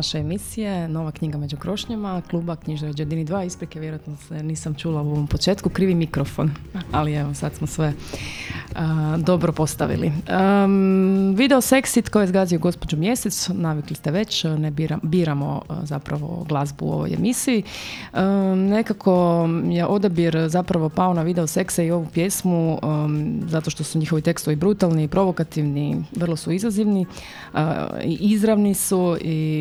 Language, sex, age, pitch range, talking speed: Croatian, female, 20-39, 155-185 Hz, 155 wpm